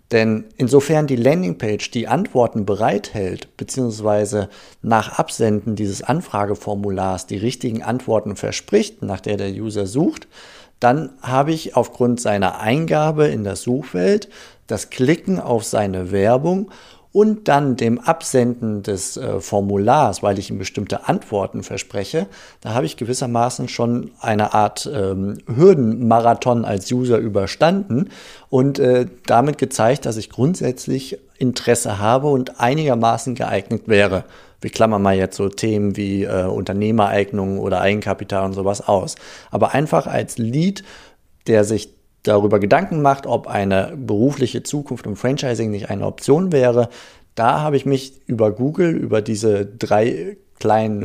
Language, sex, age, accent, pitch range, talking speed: German, male, 50-69, German, 105-130 Hz, 135 wpm